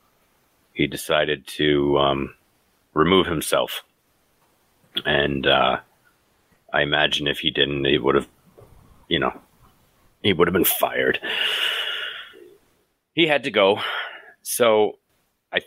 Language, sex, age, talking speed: English, male, 40-59, 110 wpm